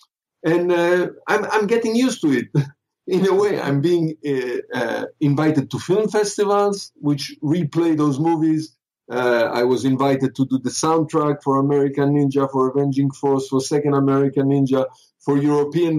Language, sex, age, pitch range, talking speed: English, male, 50-69, 135-175 Hz, 160 wpm